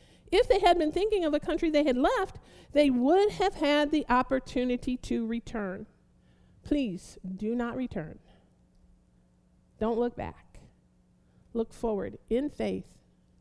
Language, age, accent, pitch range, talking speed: English, 50-69, American, 235-345 Hz, 135 wpm